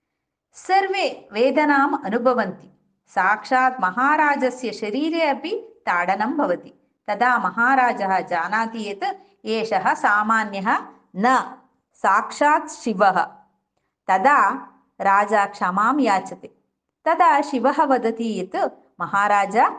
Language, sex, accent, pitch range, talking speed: Hindi, female, native, 215-315 Hz, 70 wpm